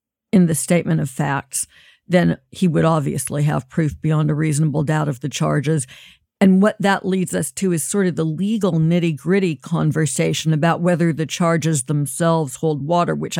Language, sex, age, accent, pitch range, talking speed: English, female, 50-69, American, 155-190 Hz, 180 wpm